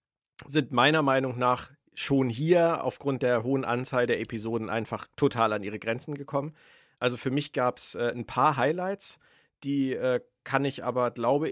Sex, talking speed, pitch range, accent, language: male, 170 wpm, 110-135 Hz, German, German